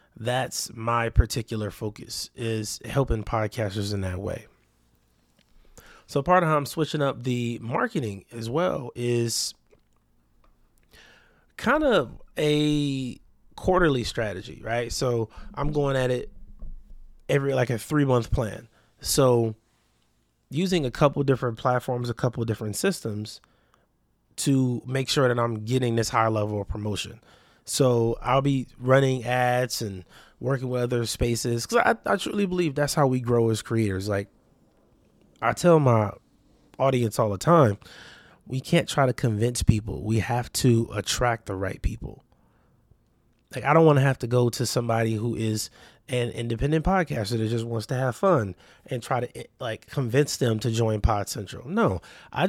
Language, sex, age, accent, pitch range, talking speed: English, male, 20-39, American, 110-135 Hz, 155 wpm